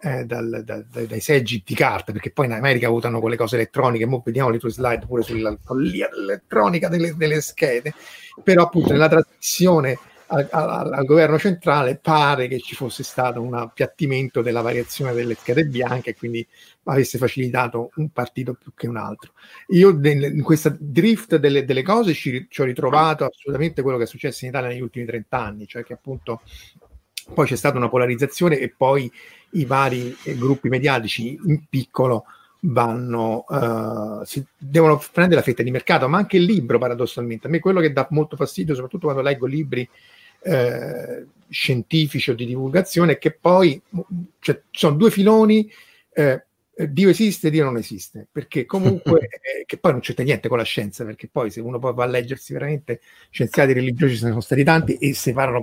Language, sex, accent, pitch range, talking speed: Italian, male, native, 120-160 Hz, 185 wpm